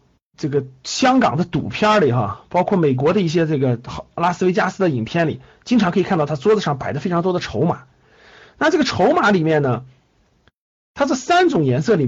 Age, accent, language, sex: 50-69, native, Chinese, male